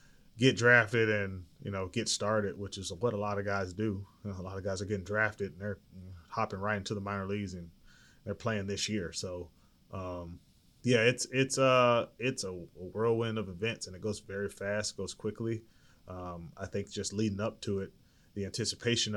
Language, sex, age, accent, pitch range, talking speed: English, male, 20-39, American, 95-110 Hz, 195 wpm